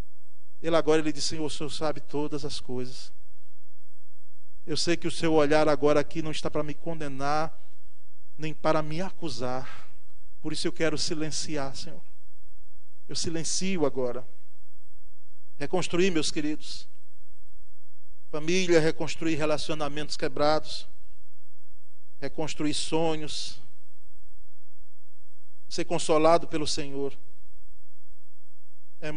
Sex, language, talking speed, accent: male, Portuguese, 105 wpm, Brazilian